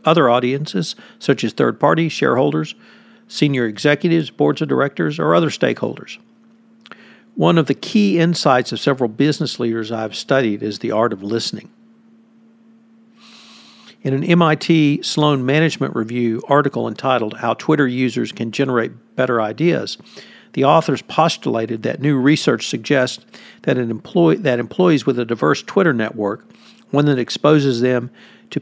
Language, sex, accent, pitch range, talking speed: English, male, American, 120-185 Hz, 140 wpm